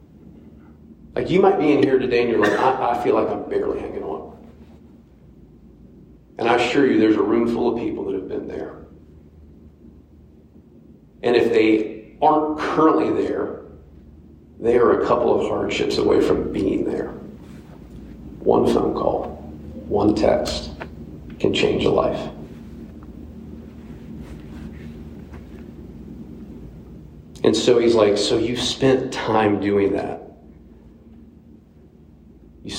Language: English